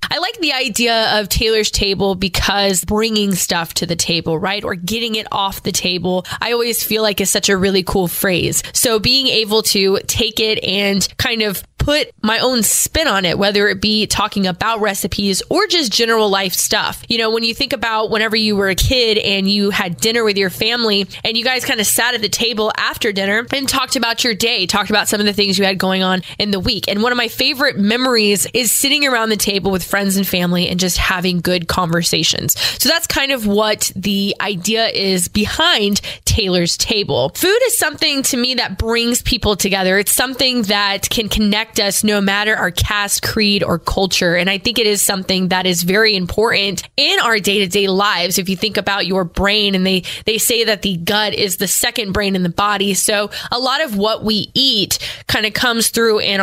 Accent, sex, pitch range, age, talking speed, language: American, female, 195-230 Hz, 20-39, 215 wpm, English